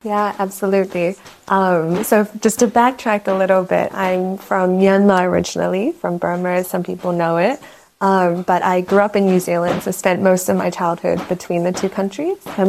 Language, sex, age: English, female, 20-39